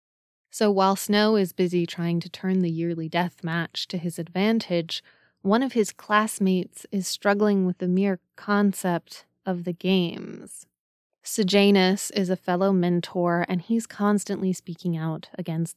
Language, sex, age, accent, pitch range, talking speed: English, female, 20-39, American, 175-210 Hz, 150 wpm